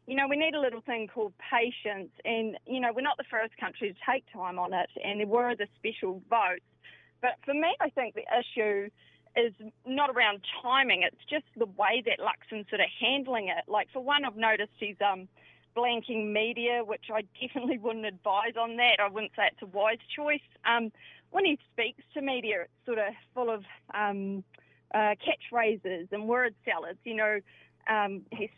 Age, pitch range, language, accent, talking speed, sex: 30-49, 205-250 Hz, English, Australian, 195 wpm, female